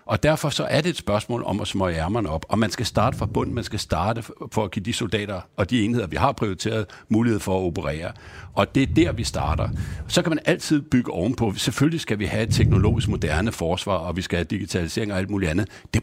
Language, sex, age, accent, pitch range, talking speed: Danish, male, 60-79, native, 95-120 Hz, 245 wpm